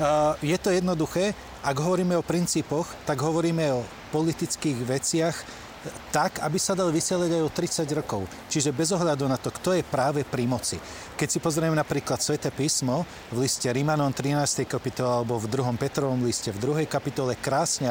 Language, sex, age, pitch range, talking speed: Slovak, male, 40-59, 125-160 Hz, 170 wpm